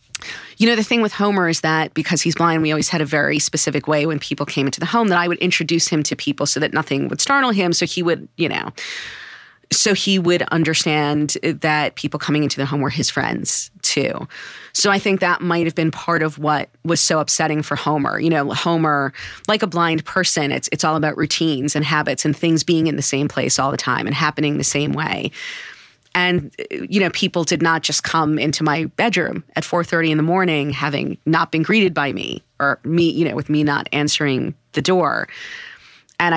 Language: English